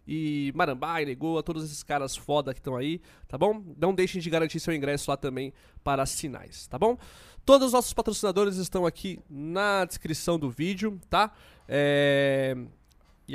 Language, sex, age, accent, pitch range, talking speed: Portuguese, male, 20-39, Brazilian, 135-190 Hz, 160 wpm